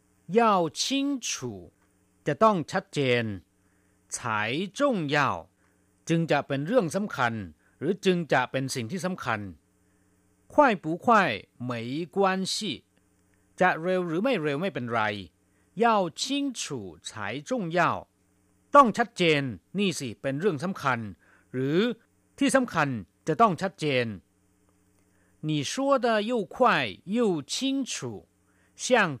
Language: Thai